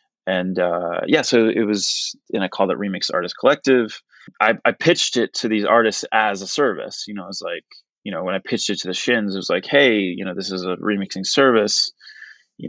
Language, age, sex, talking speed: English, 20-39, male, 240 wpm